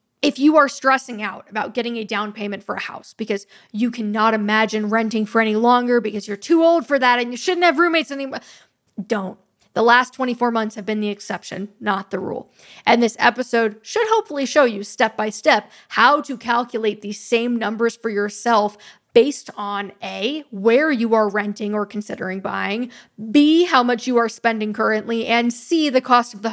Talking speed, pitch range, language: 190 wpm, 215-260 Hz, English